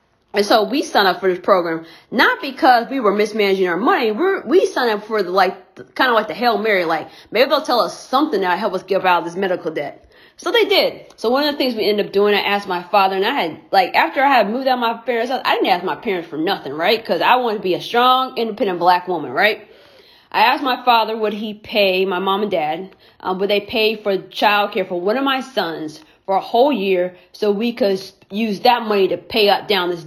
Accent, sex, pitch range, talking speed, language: American, female, 185-230 Hz, 255 wpm, English